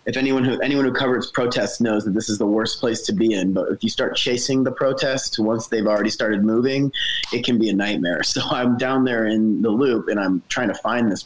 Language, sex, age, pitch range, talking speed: English, male, 20-39, 105-125 Hz, 250 wpm